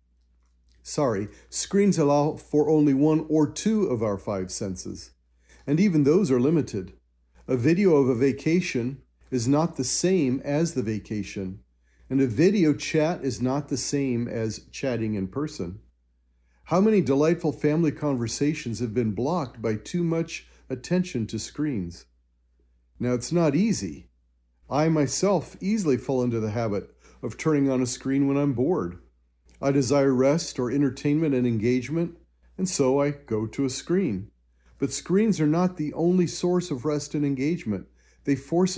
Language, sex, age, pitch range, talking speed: English, male, 40-59, 100-150 Hz, 155 wpm